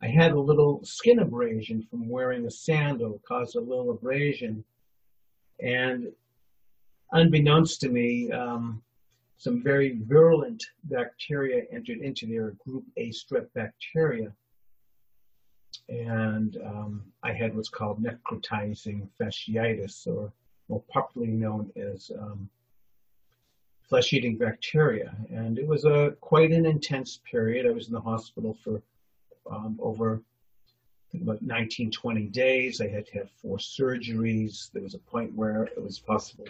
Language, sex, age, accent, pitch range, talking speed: English, male, 50-69, American, 110-145 Hz, 130 wpm